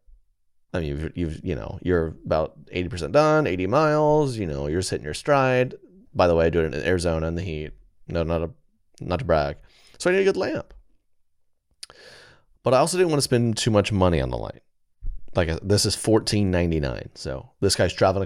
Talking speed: 215 wpm